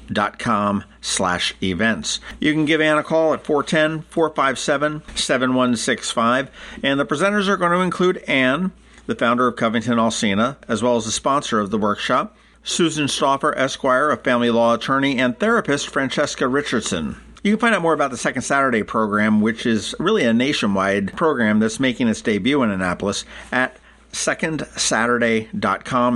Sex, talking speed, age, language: male, 155 wpm, 50-69, English